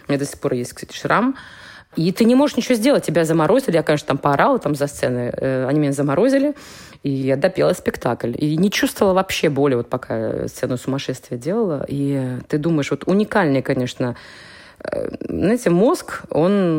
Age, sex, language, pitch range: 20-39, female, Russian, 135-190 Hz